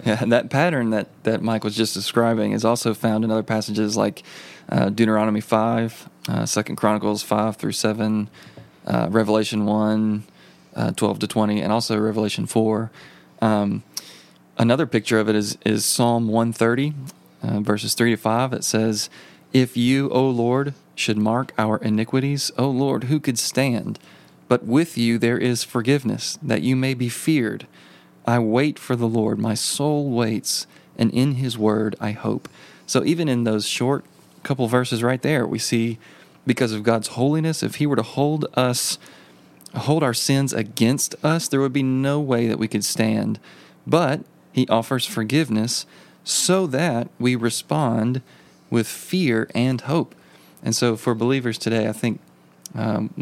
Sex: male